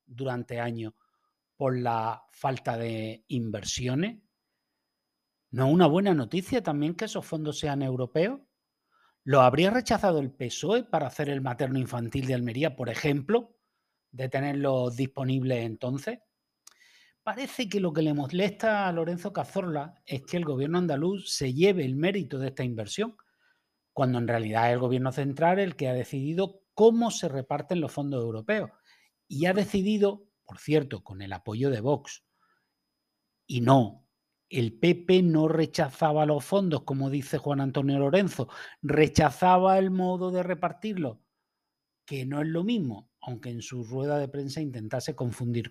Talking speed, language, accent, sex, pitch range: 150 wpm, Spanish, Spanish, male, 125-185 Hz